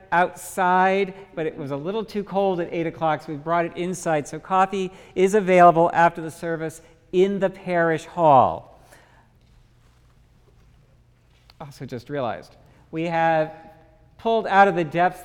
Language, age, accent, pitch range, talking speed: English, 50-69, American, 155-190 Hz, 145 wpm